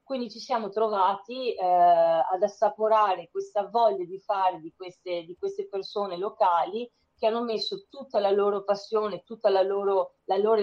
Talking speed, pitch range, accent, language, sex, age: 150 wpm, 195-225 Hz, native, Italian, female, 30-49